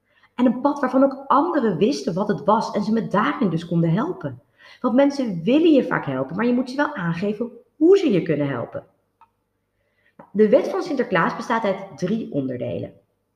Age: 30-49